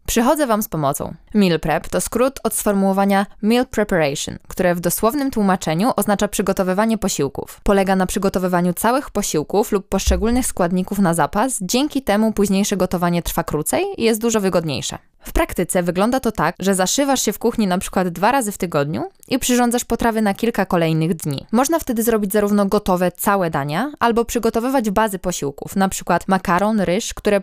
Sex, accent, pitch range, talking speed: female, native, 185-235 Hz, 170 wpm